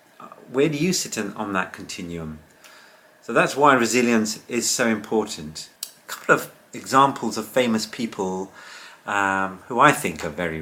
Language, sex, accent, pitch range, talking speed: English, male, British, 95-115 Hz, 155 wpm